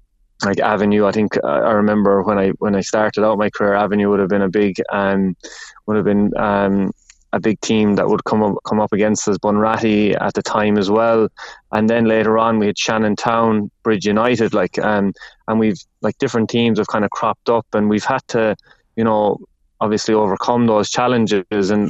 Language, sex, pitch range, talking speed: English, male, 100-110 Hz, 205 wpm